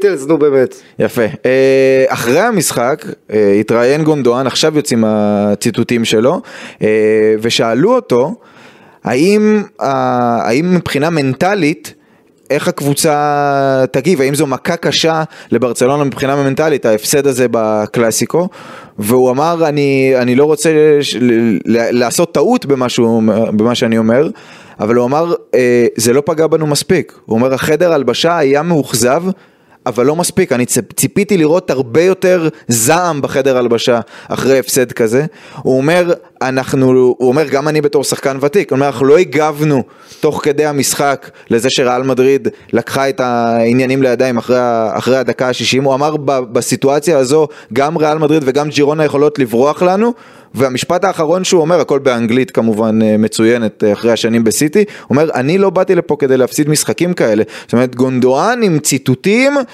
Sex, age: male, 20-39